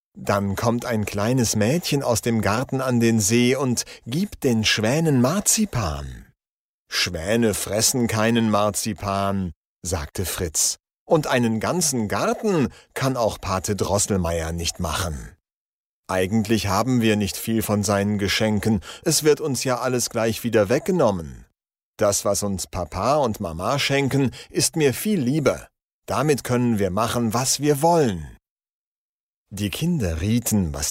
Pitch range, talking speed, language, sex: 95-125 Hz, 135 wpm, Slovak, male